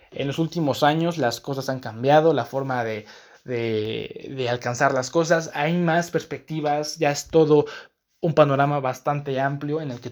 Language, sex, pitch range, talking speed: Spanish, male, 130-160 Hz, 165 wpm